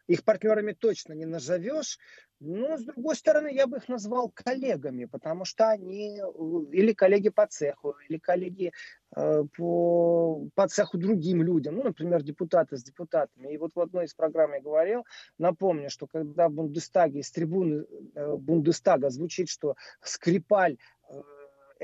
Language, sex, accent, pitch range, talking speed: Russian, male, native, 160-220 Hz, 150 wpm